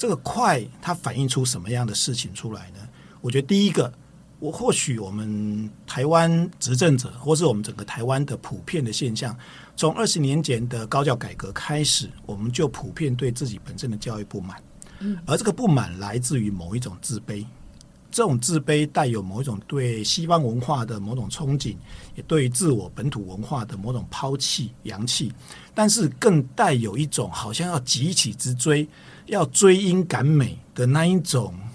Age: 50-69